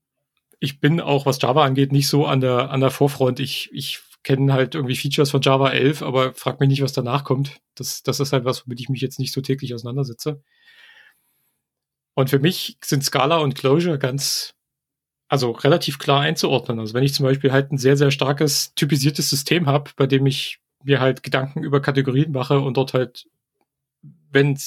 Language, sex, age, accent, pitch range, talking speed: German, male, 30-49, German, 130-150 Hz, 195 wpm